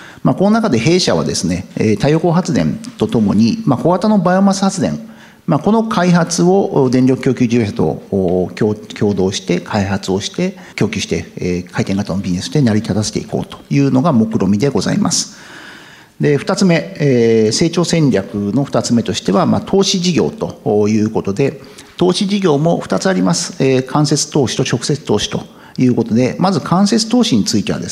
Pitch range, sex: 110-180 Hz, male